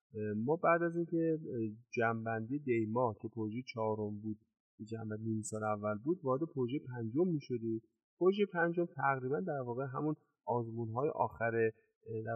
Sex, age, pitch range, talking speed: male, 30-49, 110-145 Hz, 140 wpm